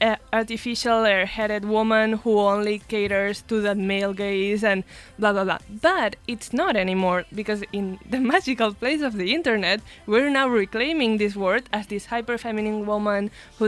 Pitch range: 205-240 Hz